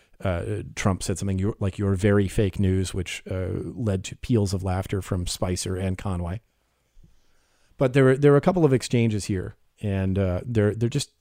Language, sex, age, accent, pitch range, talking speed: English, male, 40-59, American, 95-115 Hz, 185 wpm